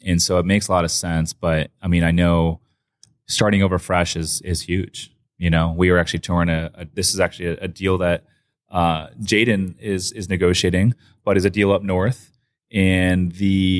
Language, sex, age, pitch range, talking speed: English, male, 20-39, 85-100 Hz, 205 wpm